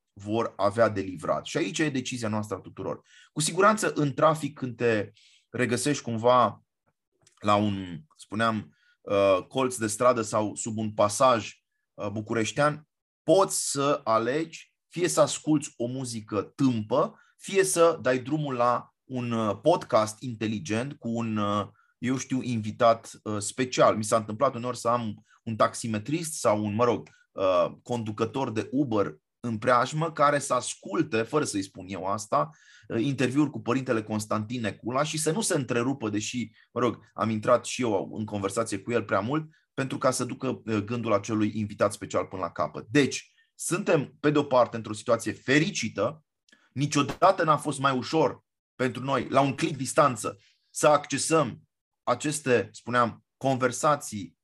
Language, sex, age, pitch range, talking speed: Romanian, male, 30-49, 110-145 Hz, 150 wpm